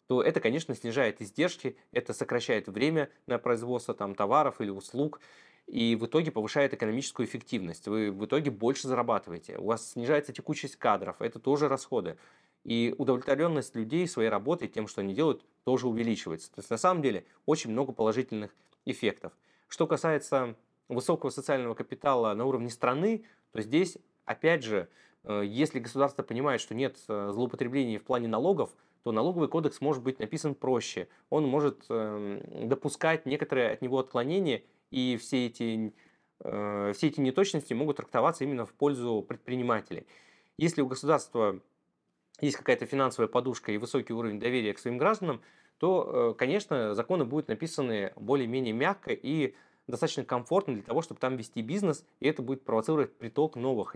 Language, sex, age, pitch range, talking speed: Russian, male, 20-39, 115-150 Hz, 155 wpm